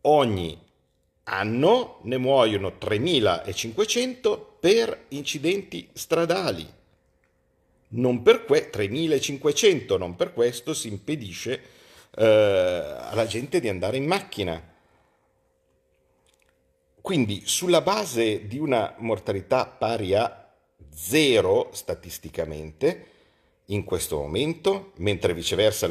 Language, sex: Italian, male